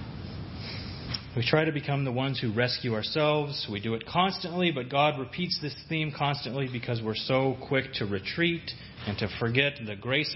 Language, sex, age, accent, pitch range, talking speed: English, male, 30-49, American, 125-165 Hz, 175 wpm